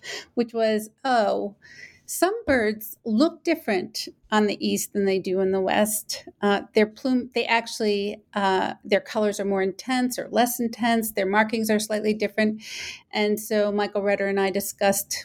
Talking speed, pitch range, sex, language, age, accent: 165 wpm, 205-240 Hz, female, English, 40-59, American